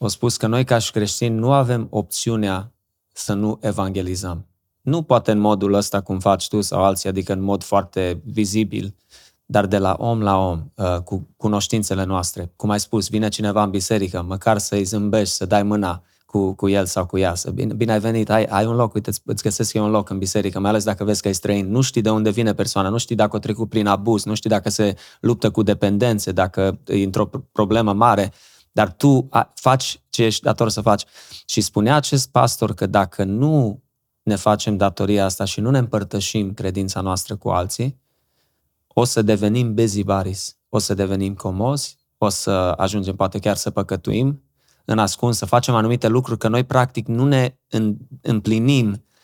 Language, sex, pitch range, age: Romanian, male, 100-115 Hz, 20-39